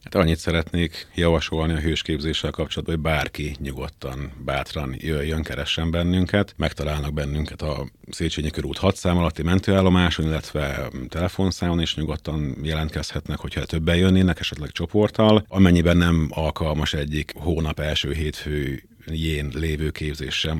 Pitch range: 75-85 Hz